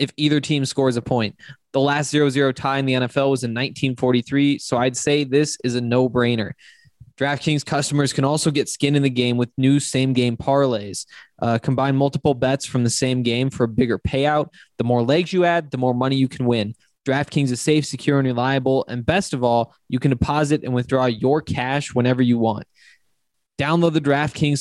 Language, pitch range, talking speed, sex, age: English, 125-145 Hz, 205 wpm, male, 20-39